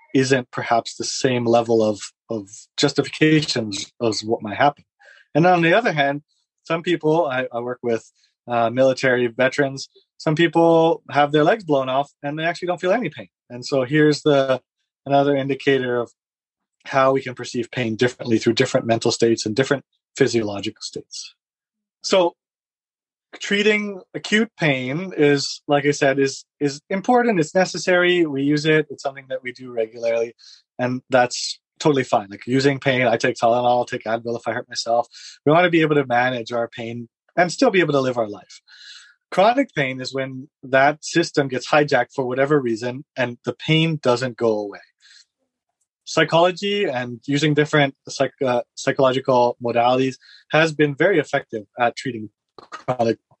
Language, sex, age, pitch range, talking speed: English, male, 30-49, 120-155 Hz, 165 wpm